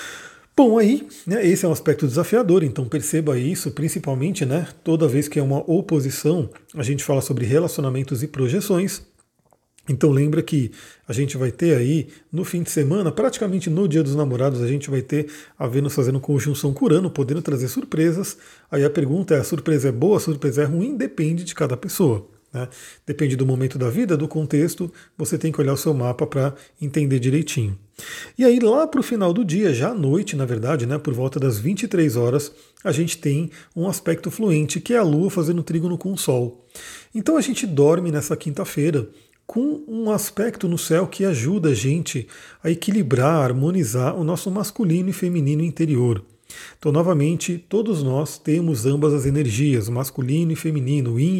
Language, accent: Portuguese, Brazilian